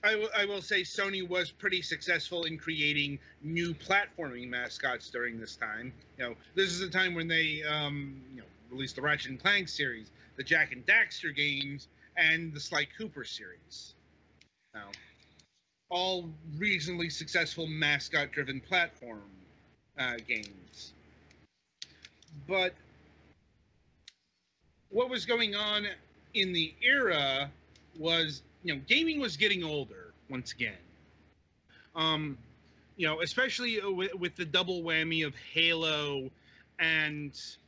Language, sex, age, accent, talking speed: English, male, 30-49, American, 130 wpm